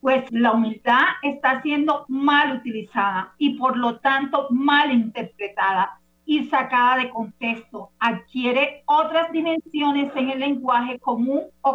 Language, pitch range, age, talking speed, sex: Spanish, 230-295 Hz, 50-69, 130 wpm, female